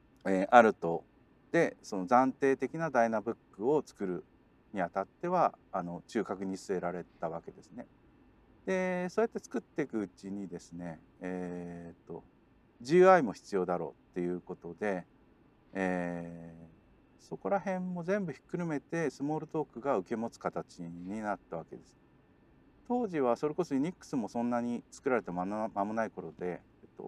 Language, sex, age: Japanese, male, 50-69